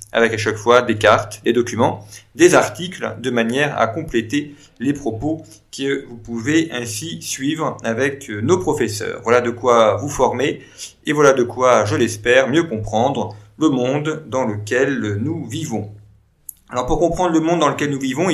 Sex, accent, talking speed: male, French, 170 wpm